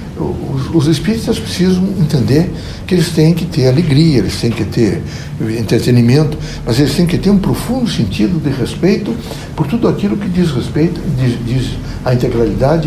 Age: 60-79